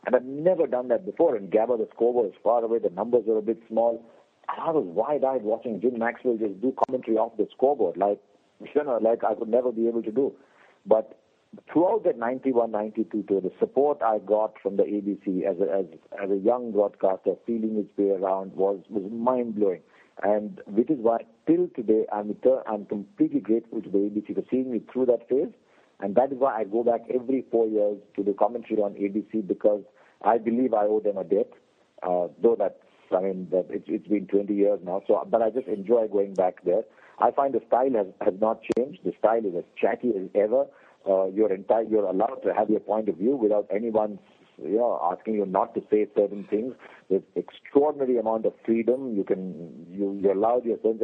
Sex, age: male, 50-69